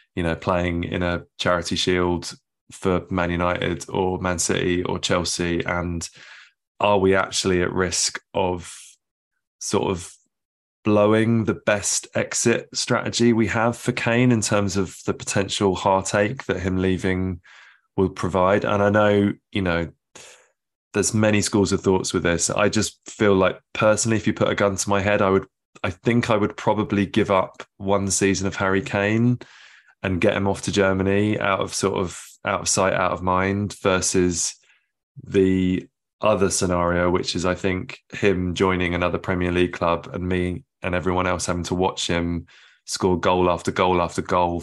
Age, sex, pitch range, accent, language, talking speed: 20-39, male, 90-105 Hz, British, English, 175 wpm